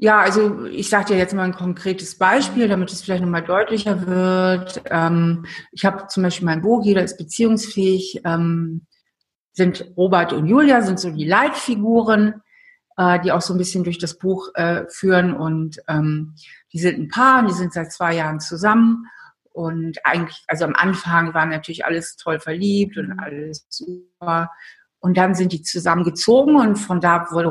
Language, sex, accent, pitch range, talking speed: German, female, German, 165-205 Hz, 165 wpm